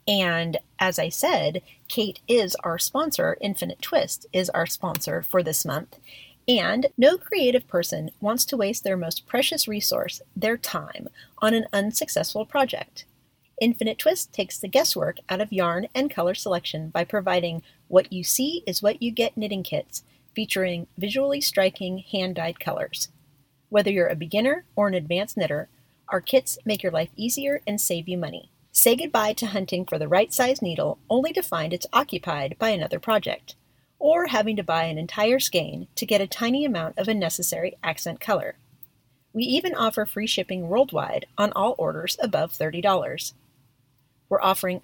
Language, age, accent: English, 40-59, American